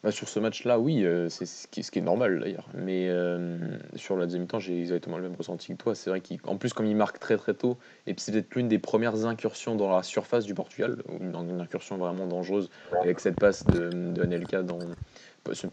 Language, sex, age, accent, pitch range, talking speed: French, male, 20-39, French, 90-105 Hz, 235 wpm